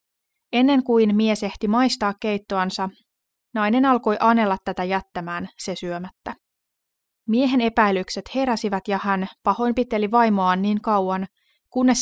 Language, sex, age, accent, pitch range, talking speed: Finnish, female, 20-39, native, 190-240 Hz, 115 wpm